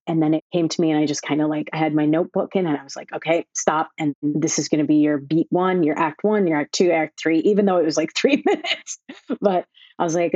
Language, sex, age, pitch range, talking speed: English, female, 30-49, 155-180 Hz, 295 wpm